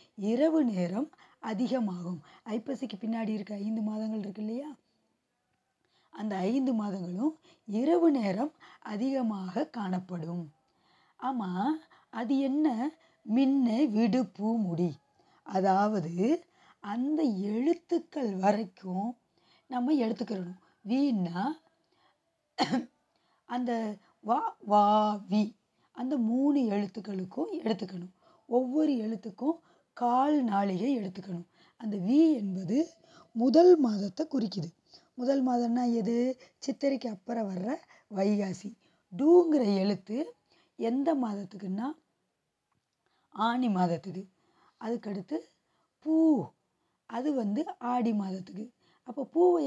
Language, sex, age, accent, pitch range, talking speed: Tamil, female, 20-39, native, 200-275 Hz, 75 wpm